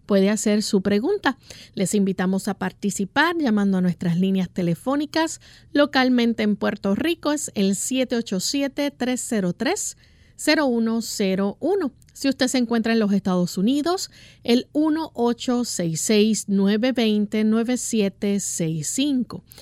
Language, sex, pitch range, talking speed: Spanish, female, 190-245 Hz, 100 wpm